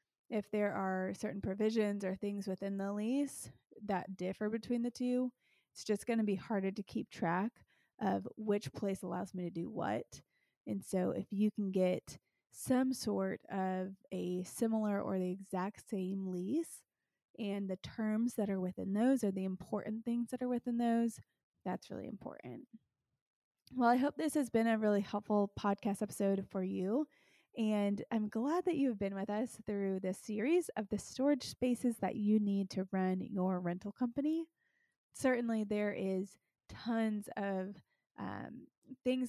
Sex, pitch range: female, 195-235 Hz